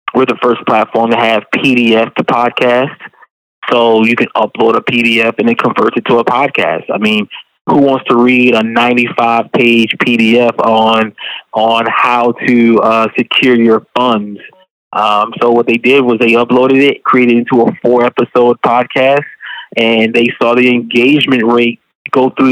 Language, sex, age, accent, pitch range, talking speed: English, male, 20-39, American, 115-135 Hz, 165 wpm